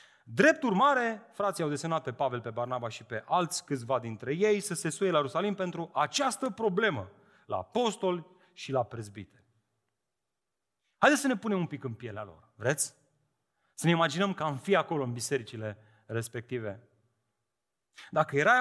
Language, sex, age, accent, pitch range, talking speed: Romanian, male, 30-49, native, 135-205 Hz, 160 wpm